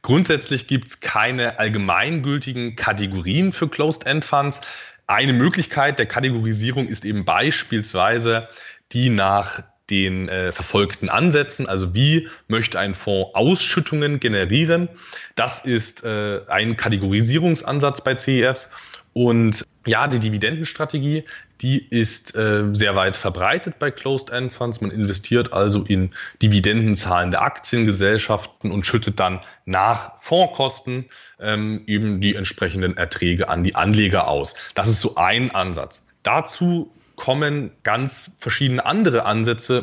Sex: male